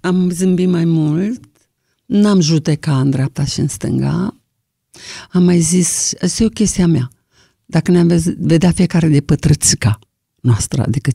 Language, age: Romanian, 50-69